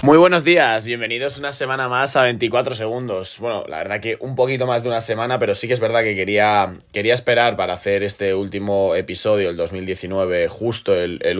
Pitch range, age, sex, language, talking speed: 100-130 Hz, 20-39, male, Spanish, 205 wpm